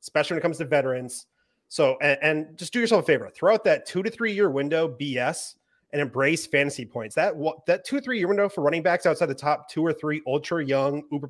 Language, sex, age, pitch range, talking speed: English, male, 30-49, 140-170 Hz, 240 wpm